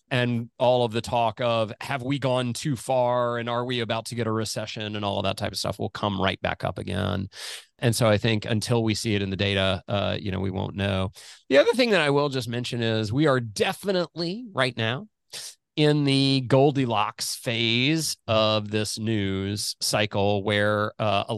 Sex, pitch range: male, 105-135 Hz